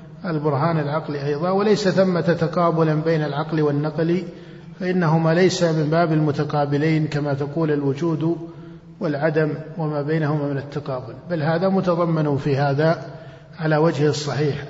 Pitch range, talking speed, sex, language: 150-175 Hz, 125 wpm, male, Arabic